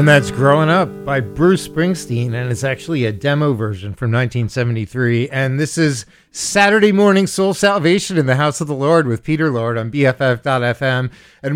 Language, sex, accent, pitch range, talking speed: English, male, American, 125-165 Hz, 175 wpm